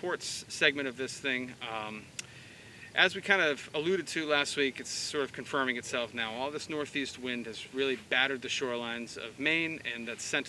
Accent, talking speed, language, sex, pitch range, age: American, 190 wpm, English, male, 120-150 Hz, 30-49